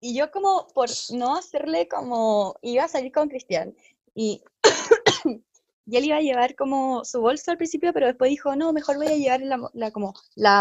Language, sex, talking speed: Spanish, female, 200 wpm